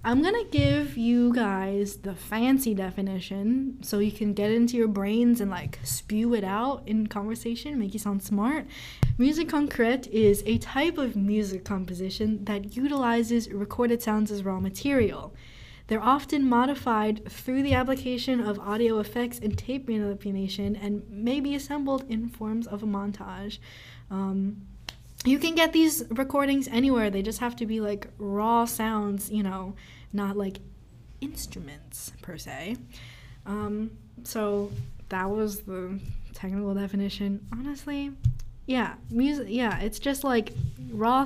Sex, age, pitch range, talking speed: female, 10-29, 200-240 Hz, 145 wpm